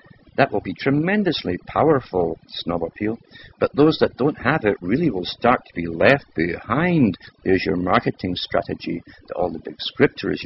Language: English